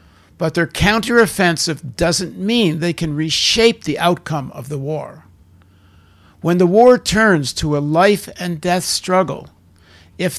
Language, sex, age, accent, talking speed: English, male, 60-79, American, 125 wpm